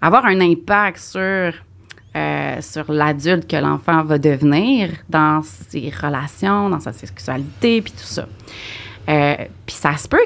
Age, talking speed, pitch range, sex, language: 30-49, 145 wpm, 155-230 Hz, female, English